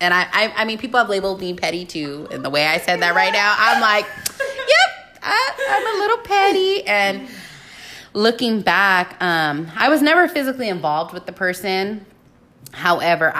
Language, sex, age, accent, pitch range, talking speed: English, female, 20-39, American, 145-190 Hz, 180 wpm